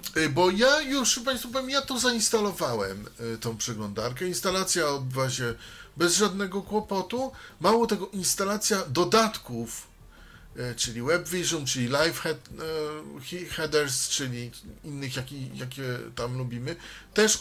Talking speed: 130 wpm